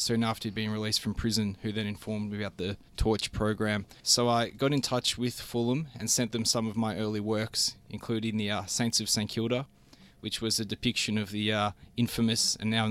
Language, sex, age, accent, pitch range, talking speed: English, male, 20-39, Australian, 105-120 Hz, 225 wpm